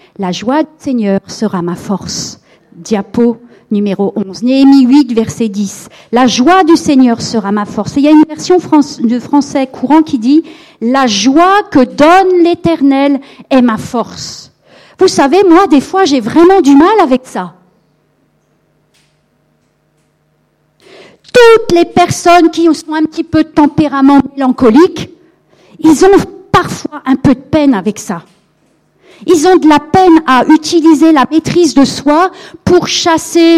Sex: female